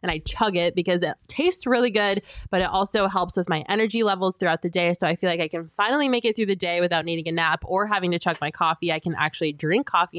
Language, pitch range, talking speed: English, 175-215 Hz, 275 wpm